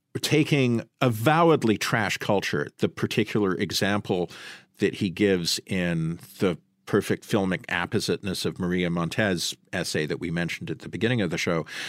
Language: English